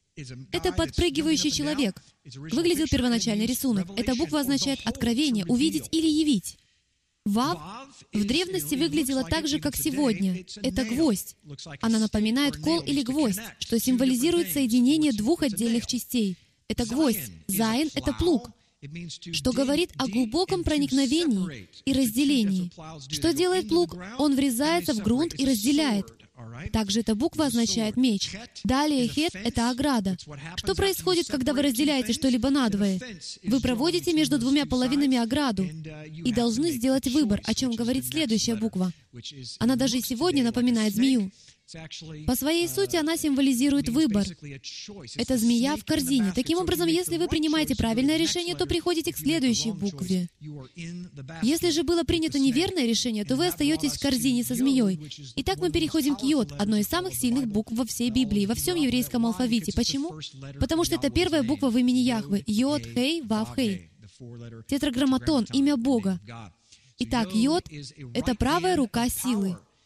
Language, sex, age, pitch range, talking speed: Russian, female, 20-39, 205-295 Hz, 145 wpm